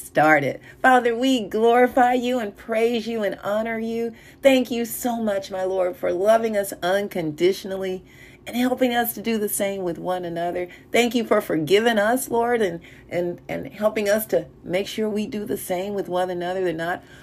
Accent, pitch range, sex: American, 155-205 Hz, female